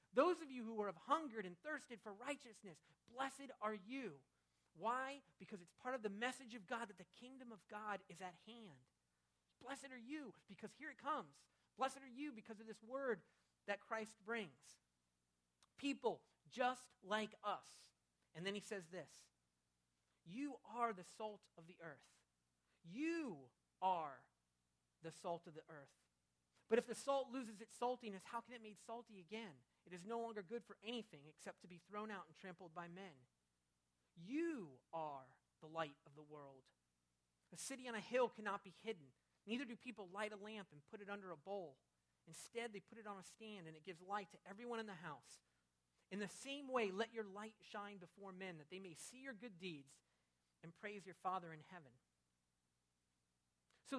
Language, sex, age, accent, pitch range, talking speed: English, male, 40-59, American, 145-230 Hz, 185 wpm